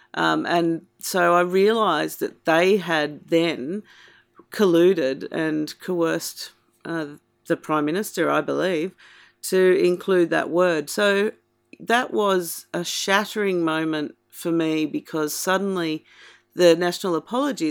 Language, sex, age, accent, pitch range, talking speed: English, female, 40-59, Australian, 160-205 Hz, 120 wpm